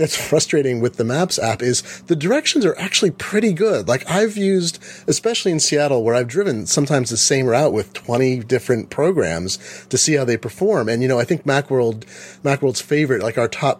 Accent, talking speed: American, 200 wpm